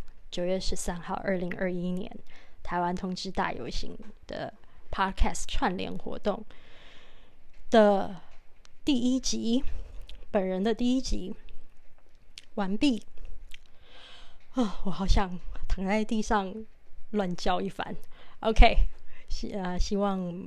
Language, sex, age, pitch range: Chinese, female, 20-39, 185-215 Hz